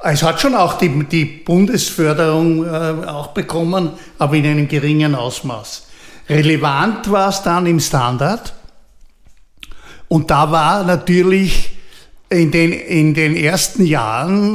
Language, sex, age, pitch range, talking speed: German, male, 60-79, 150-180 Hz, 125 wpm